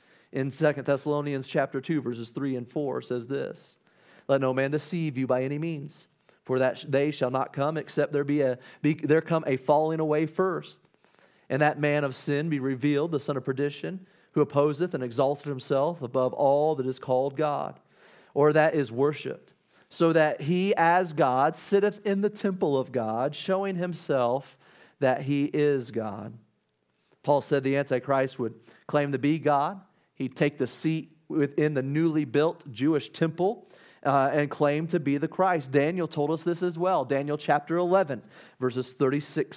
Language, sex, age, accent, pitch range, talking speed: English, male, 40-59, American, 135-160 Hz, 175 wpm